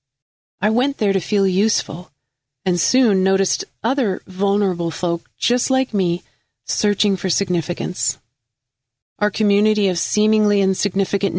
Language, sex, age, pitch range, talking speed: English, female, 40-59, 170-210 Hz, 120 wpm